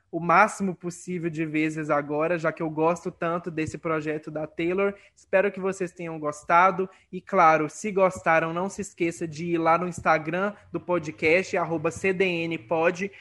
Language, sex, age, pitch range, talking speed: Portuguese, male, 20-39, 160-185 Hz, 165 wpm